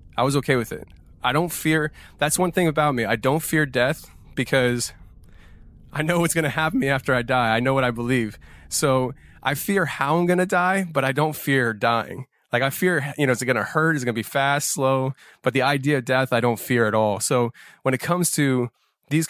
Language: English